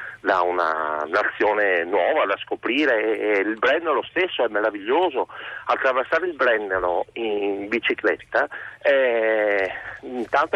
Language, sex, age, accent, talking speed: Italian, male, 50-69, native, 115 wpm